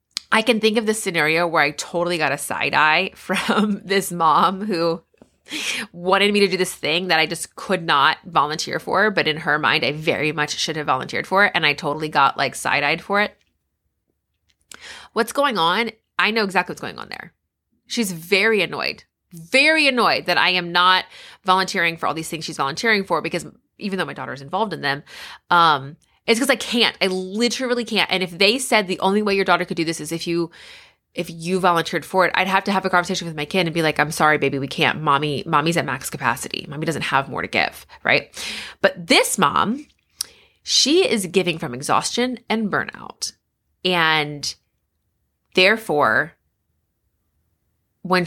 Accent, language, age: American, English, 20-39